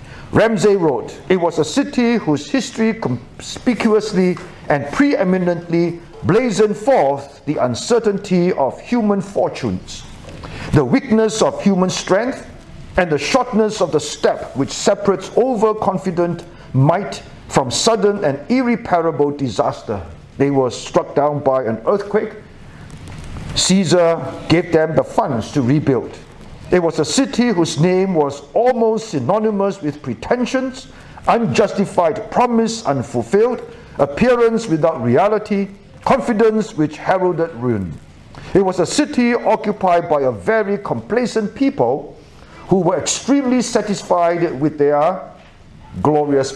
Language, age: English, 60-79